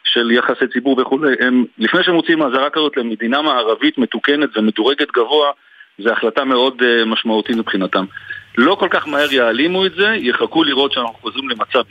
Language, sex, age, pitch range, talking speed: Hebrew, male, 50-69, 115-180 Hz, 160 wpm